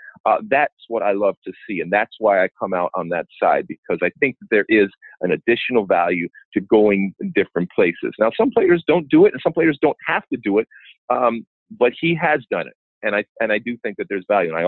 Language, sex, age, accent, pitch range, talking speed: English, male, 40-59, American, 100-145 Hz, 245 wpm